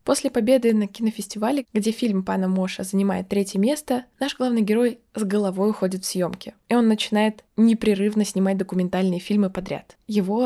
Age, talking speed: 20-39, 160 wpm